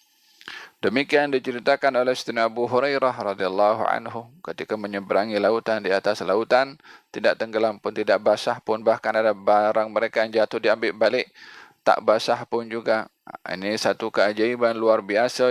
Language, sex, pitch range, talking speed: Malay, male, 105-130 Hz, 145 wpm